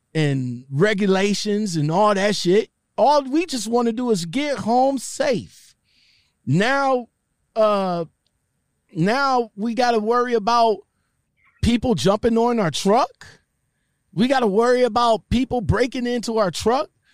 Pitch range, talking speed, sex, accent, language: 200-255 Hz, 130 wpm, male, American, English